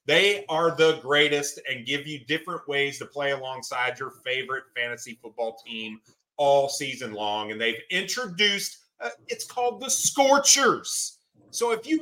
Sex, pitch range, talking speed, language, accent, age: male, 140-185 Hz, 155 wpm, English, American, 30-49